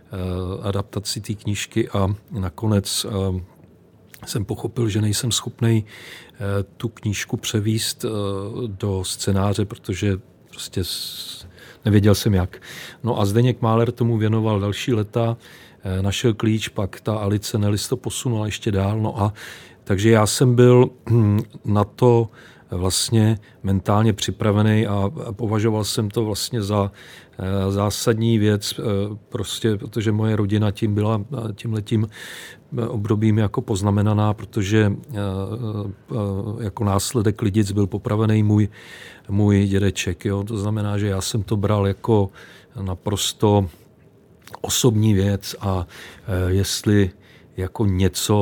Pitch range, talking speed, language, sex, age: 100-115 Hz, 120 wpm, Czech, male, 40-59